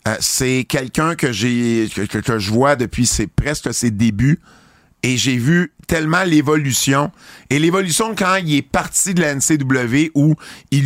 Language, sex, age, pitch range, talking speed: French, male, 50-69, 105-135 Hz, 170 wpm